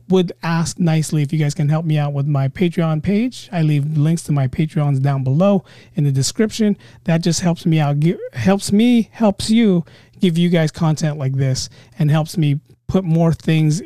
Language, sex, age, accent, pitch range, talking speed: English, male, 30-49, American, 135-185 Hz, 200 wpm